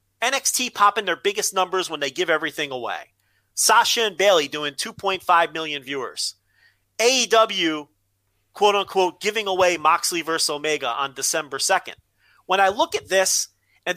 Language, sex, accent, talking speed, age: English, male, American, 145 wpm, 40-59